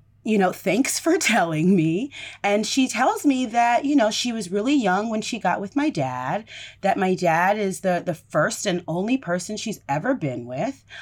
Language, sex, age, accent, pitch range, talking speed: English, female, 30-49, American, 200-260 Hz, 200 wpm